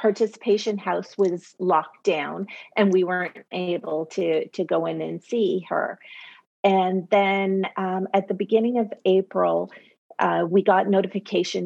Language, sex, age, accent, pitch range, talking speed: English, female, 40-59, American, 160-200 Hz, 145 wpm